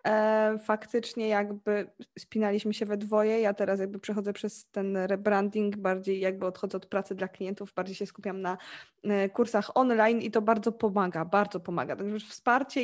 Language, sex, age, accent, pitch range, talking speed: Polish, female, 20-39, native, 200-230 Hz, 160 wpm